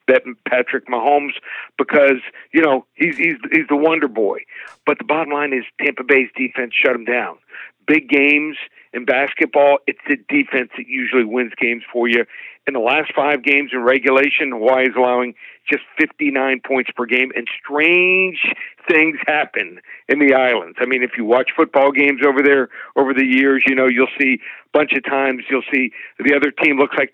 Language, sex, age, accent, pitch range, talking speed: English, male, 50-69, American, 130-160 Hz, 185 wpm